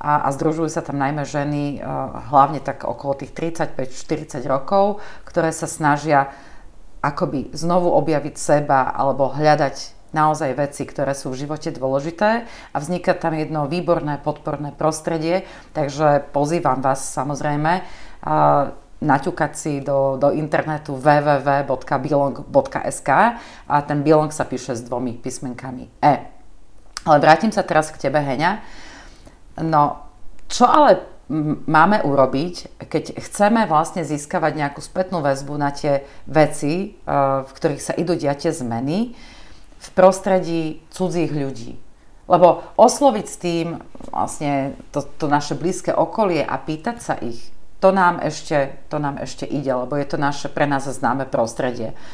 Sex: female